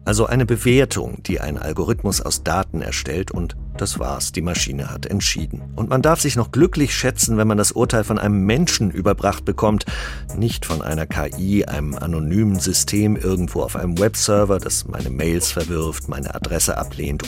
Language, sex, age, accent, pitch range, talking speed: German, male, 50-69, German, 80-110 Hz, 175 wpm